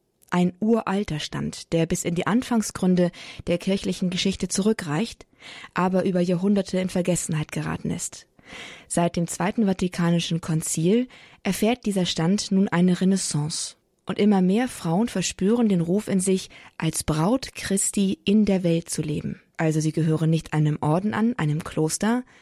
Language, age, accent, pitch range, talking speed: German, 20-39, German, 165-200 Hz, 150 wpm